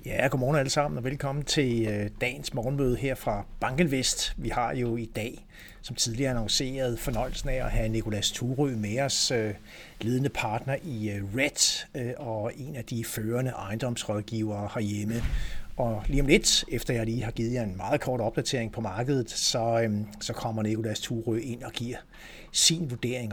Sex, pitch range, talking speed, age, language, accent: male, 110-135 Hz, 175 wpm, 60-79, Danish, native